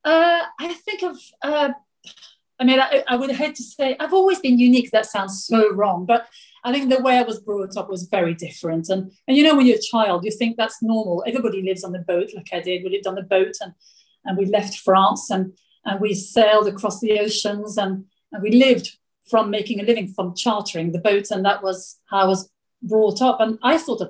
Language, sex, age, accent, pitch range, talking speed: English, female, 40-59, British, 200-245 Hz, 240 wpm